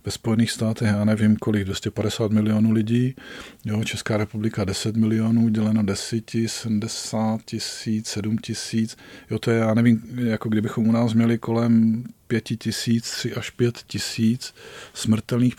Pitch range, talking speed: 110-120 Hz, 145 wpm